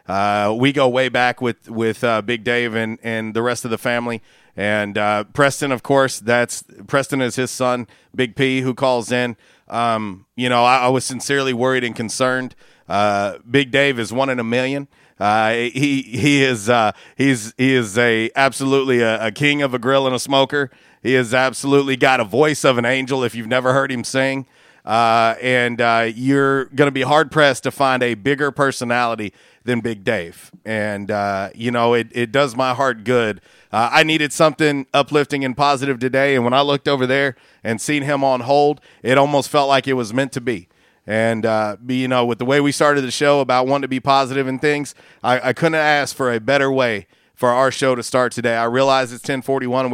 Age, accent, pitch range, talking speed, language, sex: 40-59, American, 115-135 Hz, 210 wpm, English, male